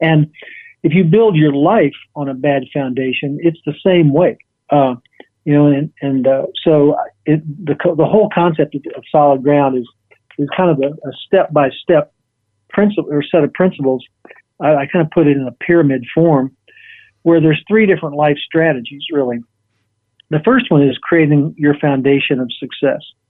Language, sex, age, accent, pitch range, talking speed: English, male, 50-69, American, 130-155 Hz, 175 wpm